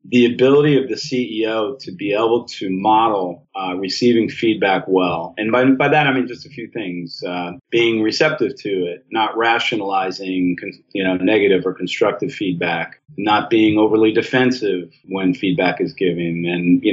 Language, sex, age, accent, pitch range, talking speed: English, male, 40-59, American, 90-120 Hz, 165 wpm